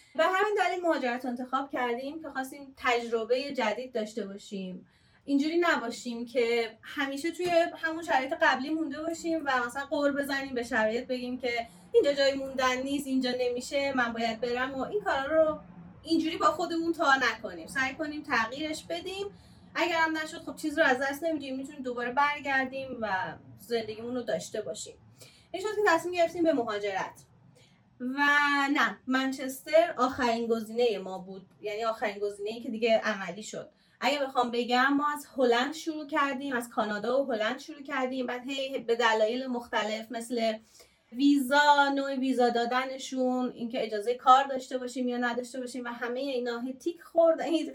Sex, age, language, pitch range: female, 30-49, Persian, 235-300 Hz